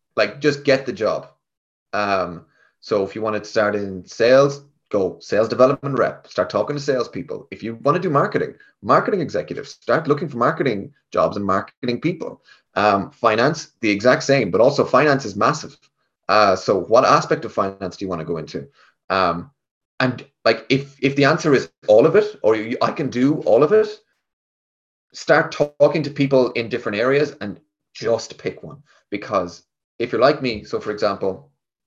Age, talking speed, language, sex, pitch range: 30-49, 185 wpm, English, male, 100-140 Hz